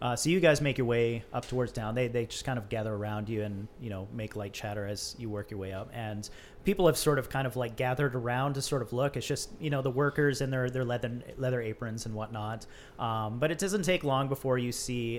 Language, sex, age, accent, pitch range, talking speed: English, male, 30-49, American, 115-145 Hz, 265 wpm